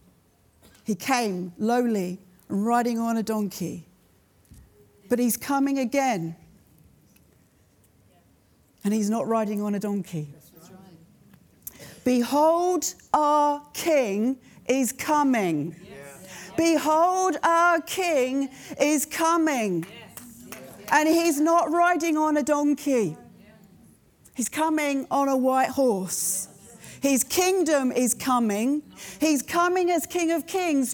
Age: 40-59